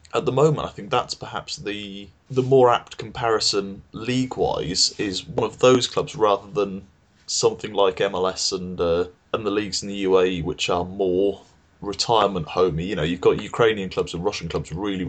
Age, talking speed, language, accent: 20-39, 185 wpm, English, British